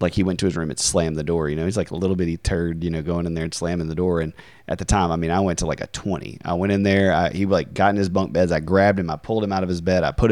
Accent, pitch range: American, 85-105 Hz